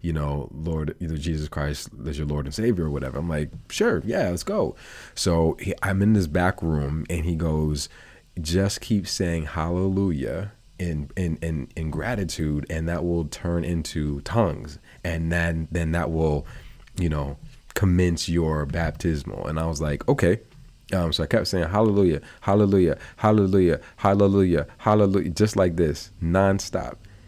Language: English